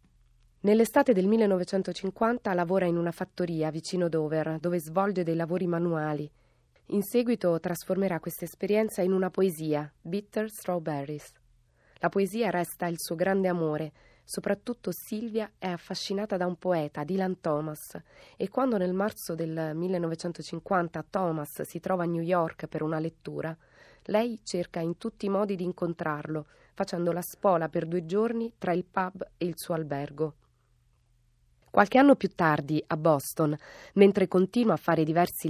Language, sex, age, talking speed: Italian, female, 20-39, 145 wpm